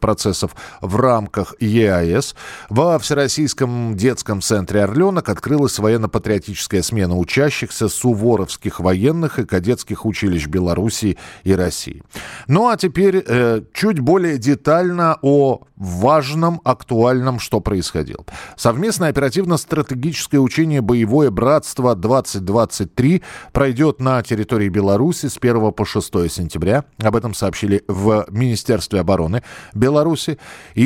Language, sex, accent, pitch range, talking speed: Russian, male, native, 105-140 Hz, 105 wpm